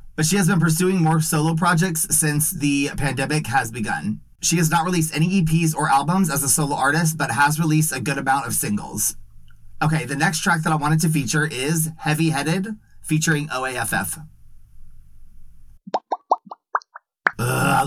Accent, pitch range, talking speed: American, 120-160 Hz, 160 wpm